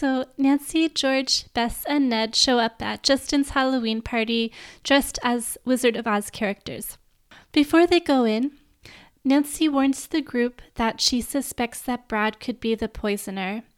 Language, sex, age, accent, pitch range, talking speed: English, female, 10-29, American, 220-270 Hz, 150 wpm